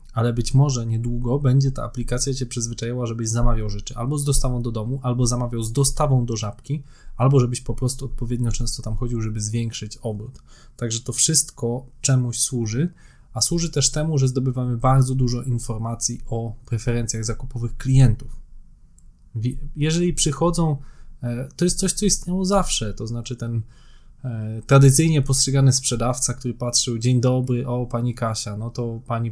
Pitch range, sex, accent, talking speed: 115-135 Hz, male, native, 155 wpm